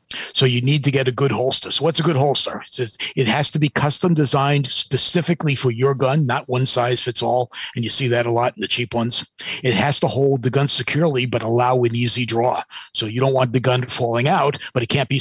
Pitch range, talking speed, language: 120-145 Hz, 245 wpm, English